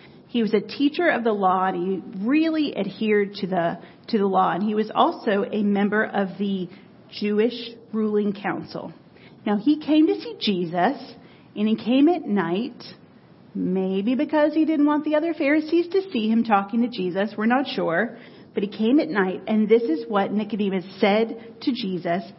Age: 40-59